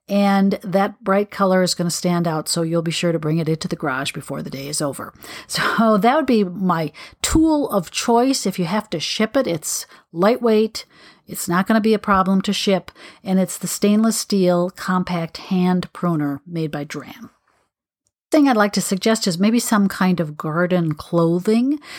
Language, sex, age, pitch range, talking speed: English, female, 40-59, 175-220 Hz, 195 wpm